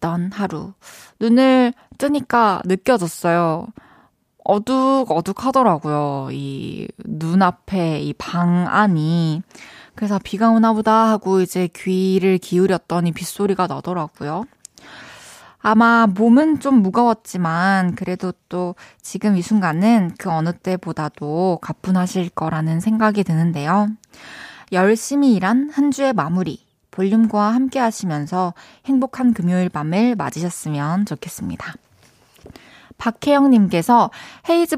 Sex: female